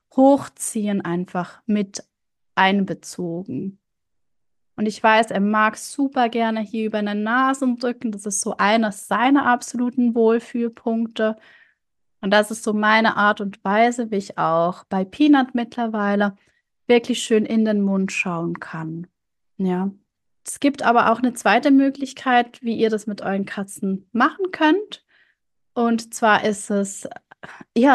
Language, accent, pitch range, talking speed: German, German, 210-255 Hz, 140 wpm